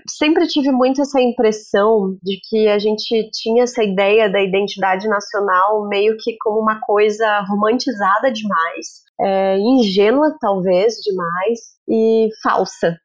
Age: 20-39